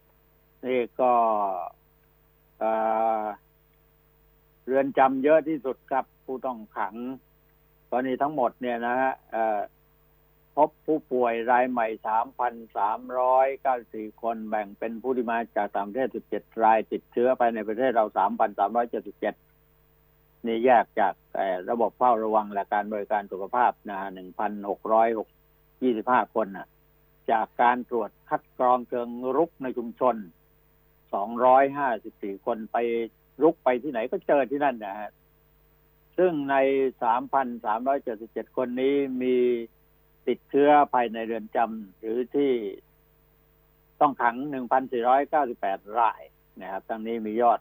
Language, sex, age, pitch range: Thai, male, 60-79, 110-130 Hz